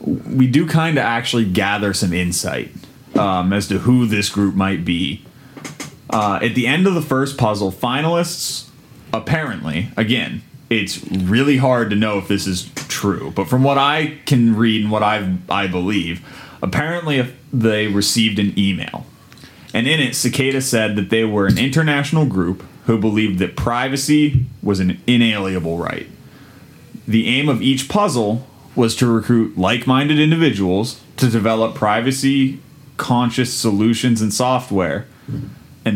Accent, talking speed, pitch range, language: American, 145 wpm, 105-135 Hz, English